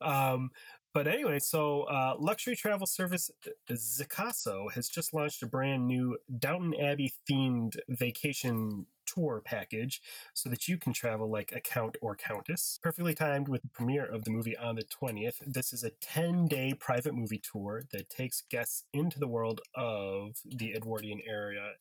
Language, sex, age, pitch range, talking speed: English, male, 30-49, 110-145 Hz, 160 wpm